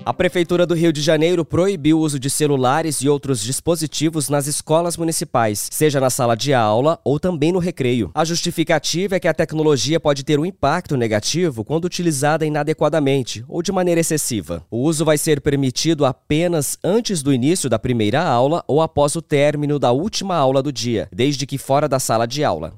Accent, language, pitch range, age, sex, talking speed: Brazilian, English, 135-165 Hz, 20-39, male, 190 wpm